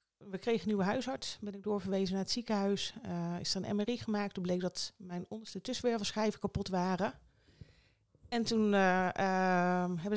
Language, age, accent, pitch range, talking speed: Dutch, 30-49, Dutch, 175-210 Hz, 175 wpm